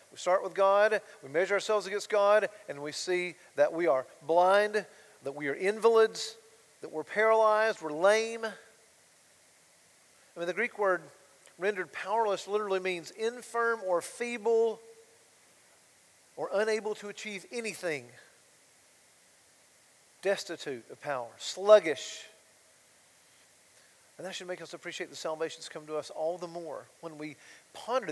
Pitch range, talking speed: 170-215 Hz, 135 wpm